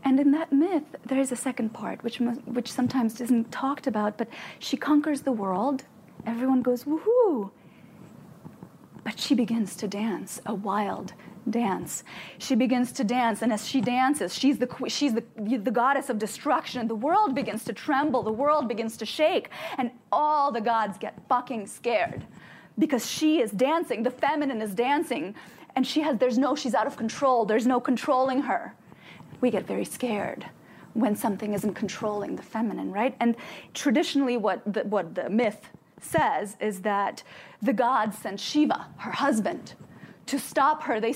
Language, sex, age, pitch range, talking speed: English, female, 30-49, 225-290 Hz, 170 wpm